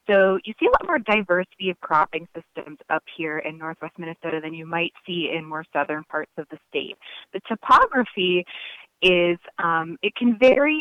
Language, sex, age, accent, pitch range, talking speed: English, female, 20-39, American, 170-225 Hz, 185 wpm